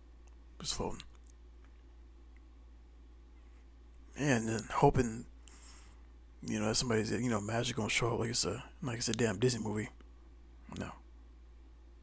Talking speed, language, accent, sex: 125 wpm, English, American, male